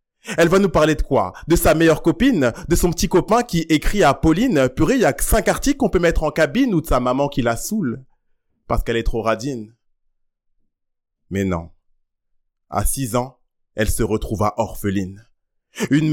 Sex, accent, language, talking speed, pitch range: male, French, French, 190 wpm, 105-155 Hz